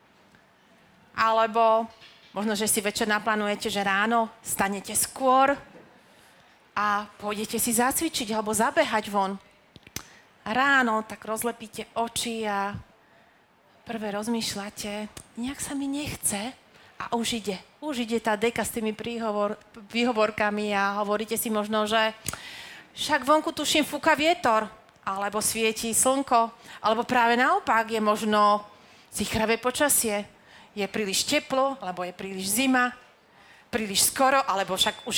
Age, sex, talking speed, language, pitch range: 40-59, female, 125 wpm, Slovak, 200-235 Hz